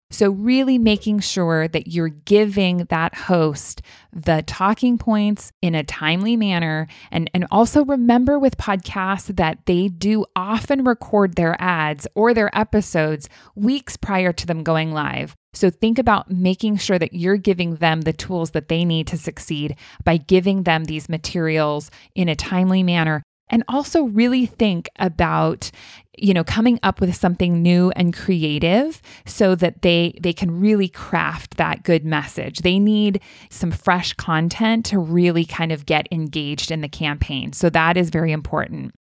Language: English